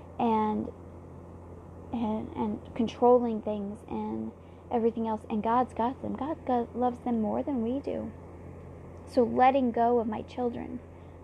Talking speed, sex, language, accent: 135 wpm, female, English, American